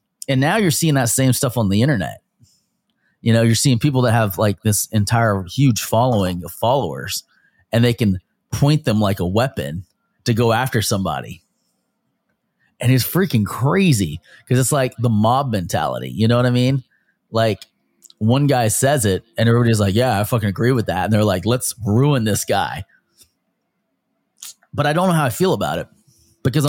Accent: American